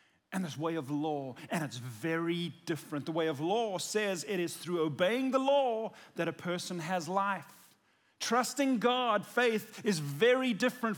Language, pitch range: English, 155-230 Hz